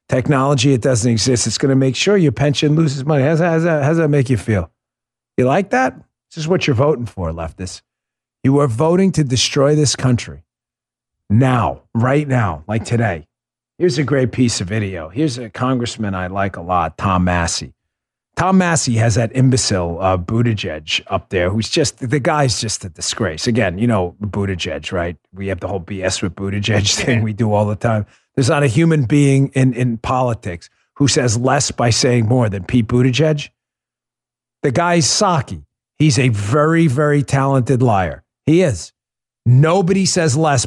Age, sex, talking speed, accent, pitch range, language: 40-59, male, 185 wpm, American, 100-150 Hz, English